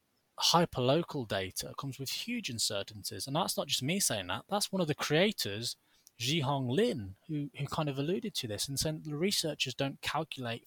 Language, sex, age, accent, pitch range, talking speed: English, male, 20-39, British, 115-155 Hz, 185 wpm